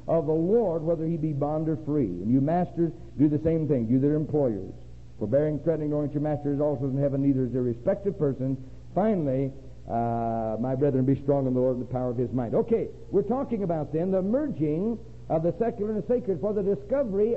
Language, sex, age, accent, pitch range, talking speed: English, male, 60-79, American, 110-170 Hz, 230 wpm